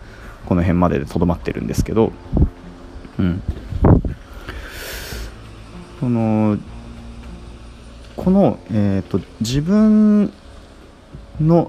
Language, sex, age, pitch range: Japanese, male, 20-39, 85-130 Hz